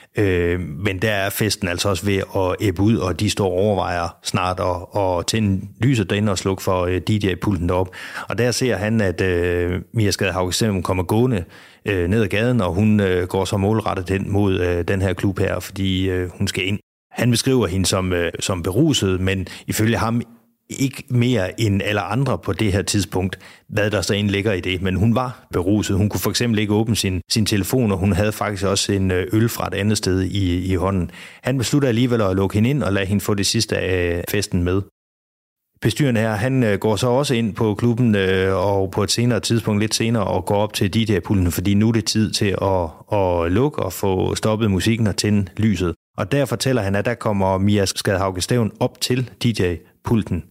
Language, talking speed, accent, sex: Danish, 210 wpm, native, male